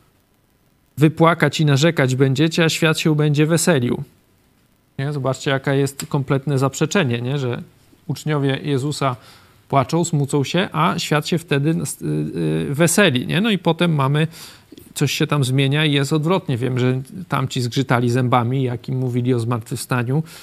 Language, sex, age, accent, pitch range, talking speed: Polish, male, 40-59, native, 135-160 Hz, 150 wpm